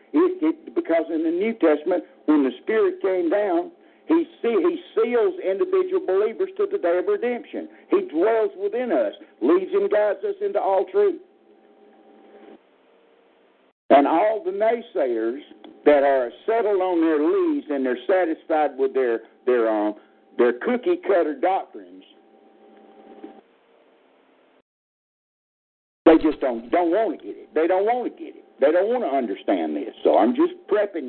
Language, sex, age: English, male, 60-79